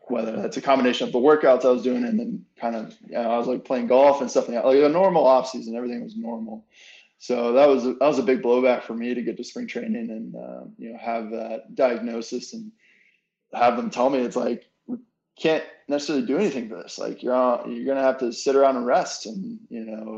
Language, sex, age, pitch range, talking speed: English, male, 20-39, 115-135 Hz, 245 wpm